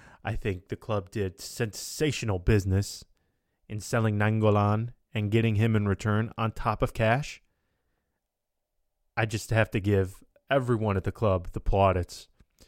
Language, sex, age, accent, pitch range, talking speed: English, male, 20-39, American, 95-115 Hz, 140 wpm